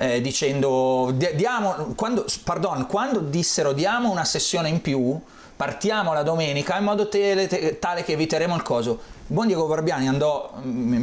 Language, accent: Italian, native